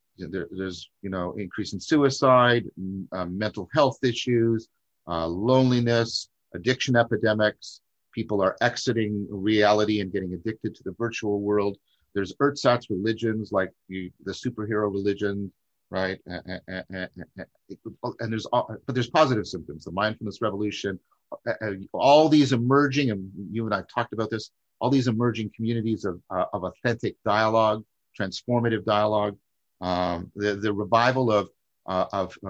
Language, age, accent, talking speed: English, 50-69, American, 135 wpm